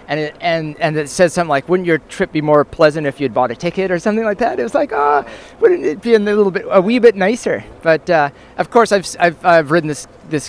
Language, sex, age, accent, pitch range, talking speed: English, male, 30-49, American, 130-175 Hz, 275 wpm